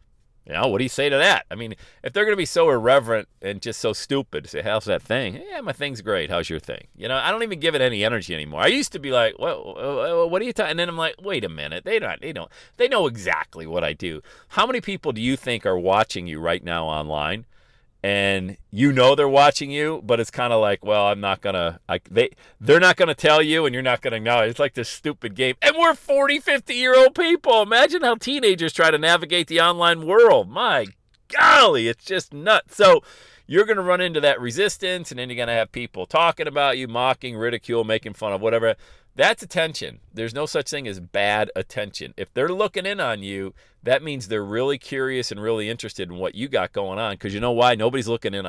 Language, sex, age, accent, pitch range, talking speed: English, male, 40-59, American, 115-180 Hz, 245 wpm